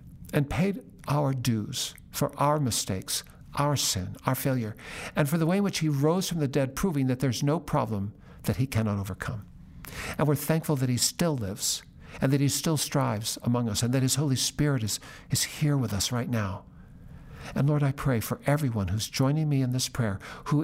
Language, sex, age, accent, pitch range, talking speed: English, male, 60-79, American, 120-150 Hz, 205 wpm